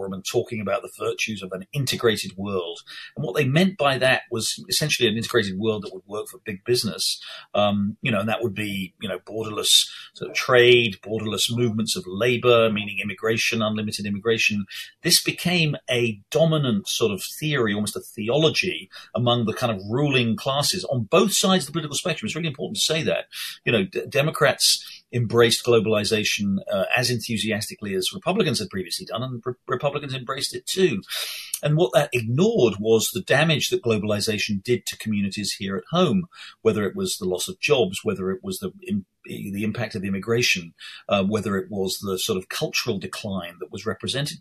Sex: male